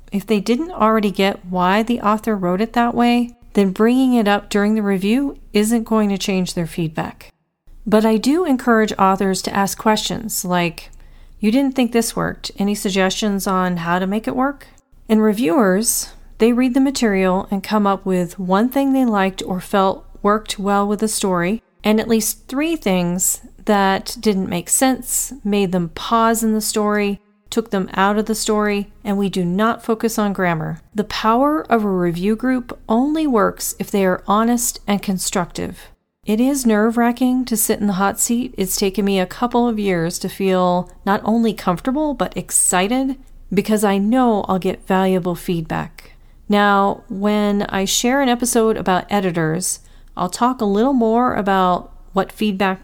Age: 40-59